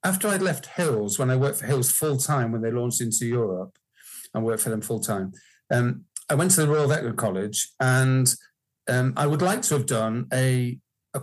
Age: 40-59